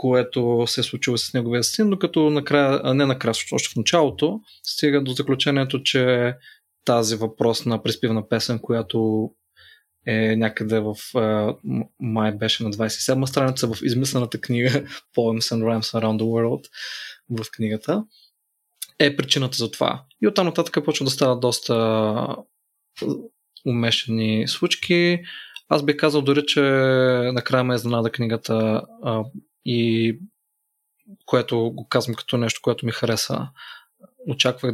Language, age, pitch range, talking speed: Bulgarian, 20-39, 115-140 Hz, 135 wpm